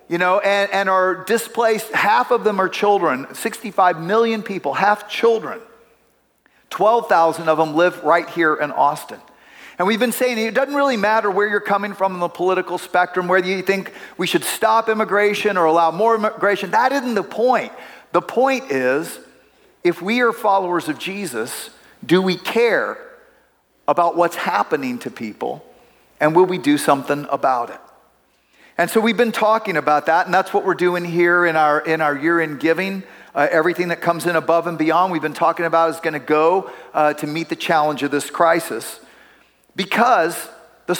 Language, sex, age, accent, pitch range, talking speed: English, male, 40-59, American, 165-215 Hz, 185 wpm